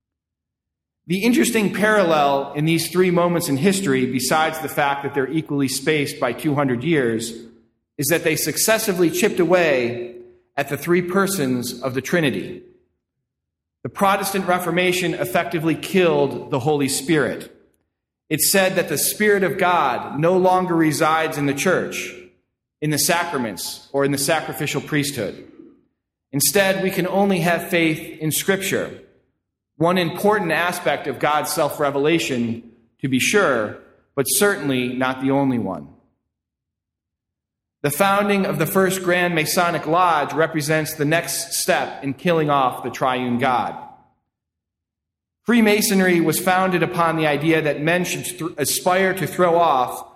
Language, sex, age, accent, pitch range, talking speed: English, male, 40-59, American, 135-175 Hz, 140 wpm